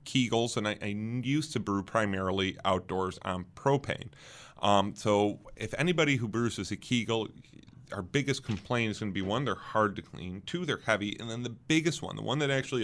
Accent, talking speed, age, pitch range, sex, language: American, 200 wpm, 30-49, 95-125 Hz, male, English